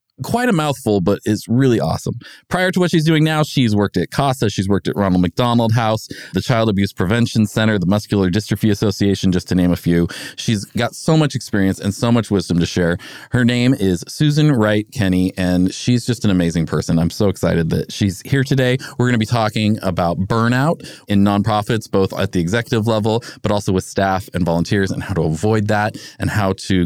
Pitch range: 95-135 Hz